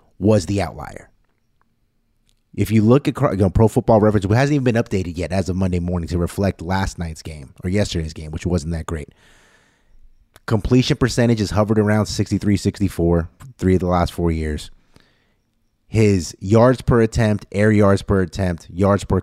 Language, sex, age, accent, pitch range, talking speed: English, male, 30-49, American, 90-110 Hz, 175 wpm